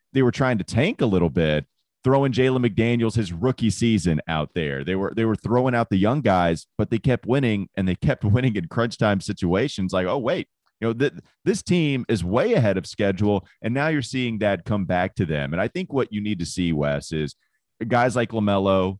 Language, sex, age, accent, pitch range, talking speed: English, male, 30-49, American, 90-120 Hz, 225 wpm